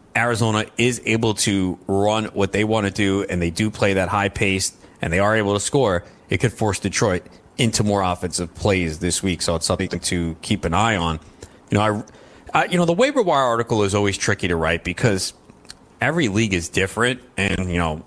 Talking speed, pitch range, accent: 215 wpm, 95-120 Hz, American